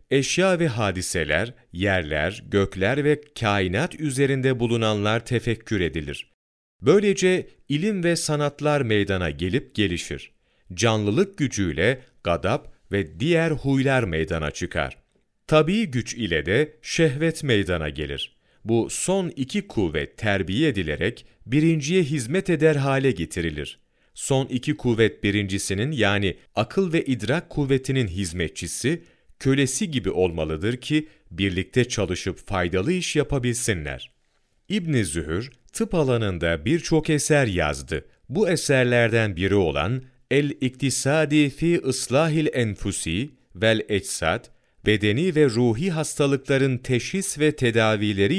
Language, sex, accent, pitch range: Turkish, male, native, 95-150 Hz